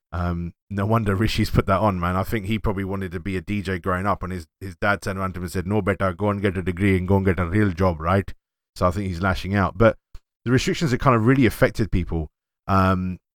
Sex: male